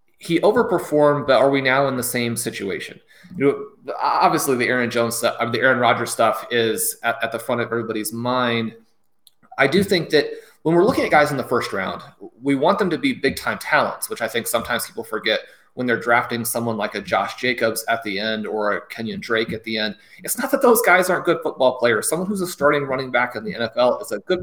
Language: English